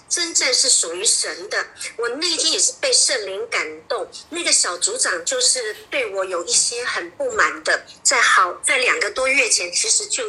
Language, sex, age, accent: Chinese, male, 50-69, American